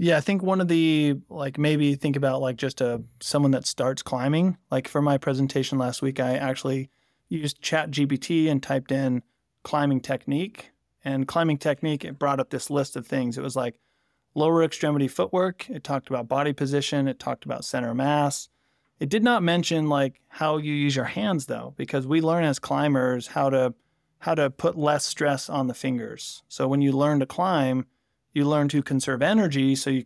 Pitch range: 130-150 Hz